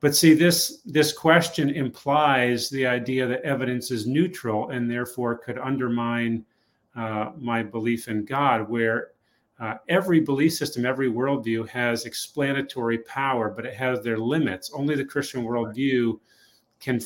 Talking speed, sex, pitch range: 145 wpm, male, 115-135 Hz